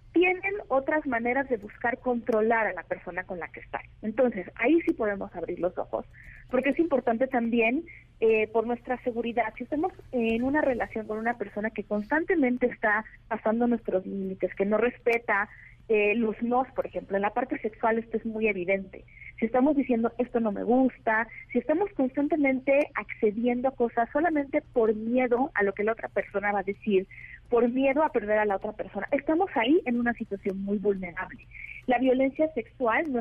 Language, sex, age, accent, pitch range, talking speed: Spanish, female, 30-49, Mexican, 210-265 Hz, 185 wpm